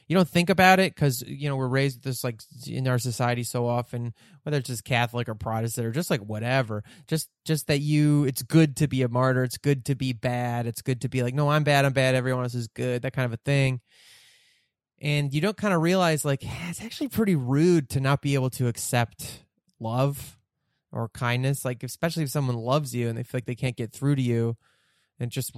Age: 20-39